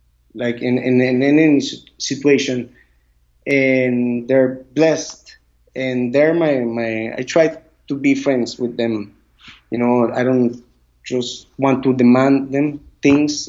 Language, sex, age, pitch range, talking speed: English, male, 20-39, 120-155 Hz, 140 wpm